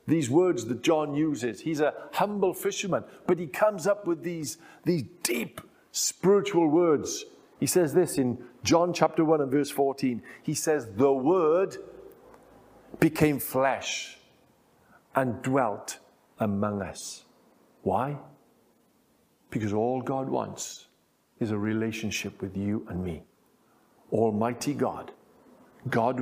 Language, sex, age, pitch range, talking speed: English, male, 50-69, 110-155 Hz, 125 wpm